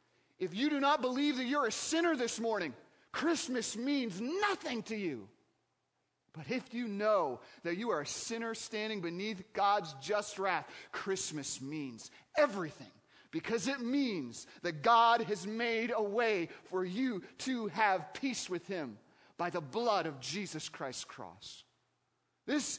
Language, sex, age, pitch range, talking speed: English, male, 40-59, 155-215 Hz, 150 wpm